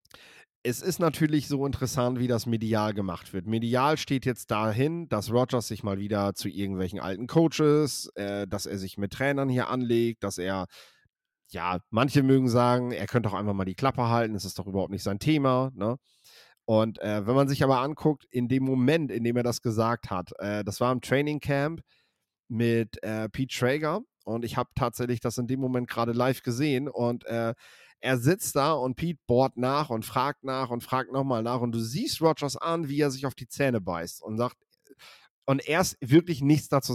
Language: German